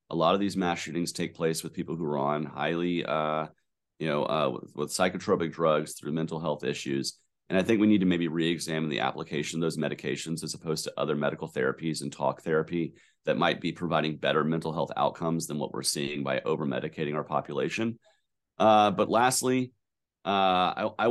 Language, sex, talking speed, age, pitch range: English, male, 200 wpm, 30-49, 80-95 Hz